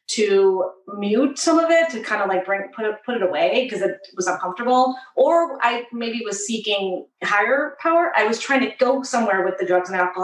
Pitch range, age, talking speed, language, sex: 185-245 Hz, 30-49, 215 wpm, English, female